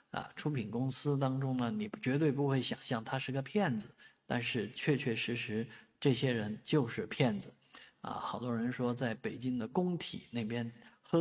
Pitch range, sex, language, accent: 120-160 Hz, male, Chinese, native